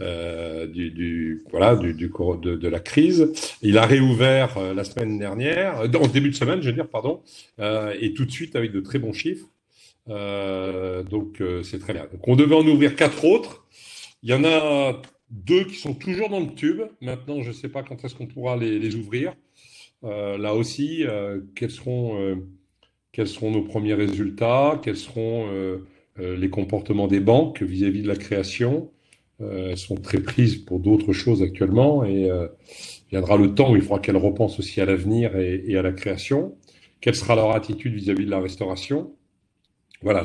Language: French